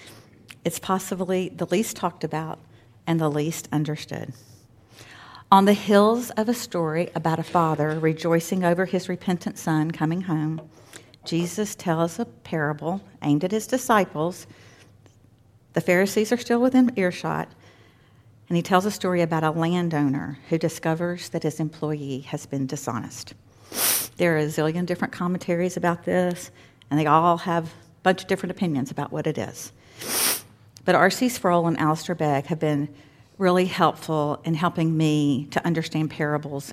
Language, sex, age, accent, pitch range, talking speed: English, female, 50-69, American, 135-180 Hz, 150 wpm